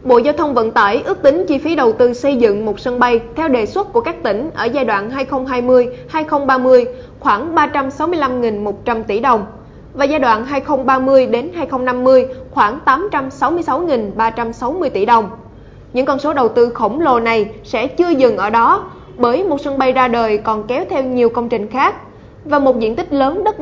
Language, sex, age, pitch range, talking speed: Vietnamese, female, 20-39, 230-285 Hz, 180 wpm